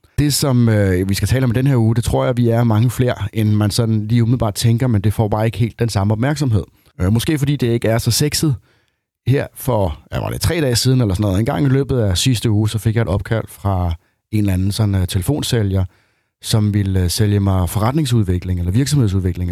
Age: 30-49